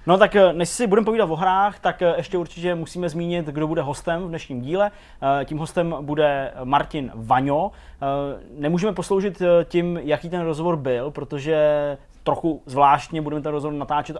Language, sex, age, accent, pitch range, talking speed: Czech, male, 20-39, native, 125-165 Hz, 160 wpm